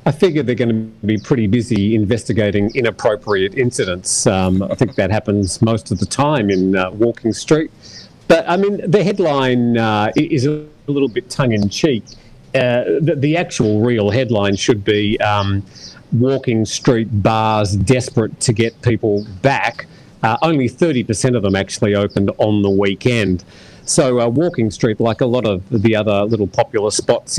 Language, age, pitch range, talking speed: English, 40-59, 105-130 Hz, 160 wpm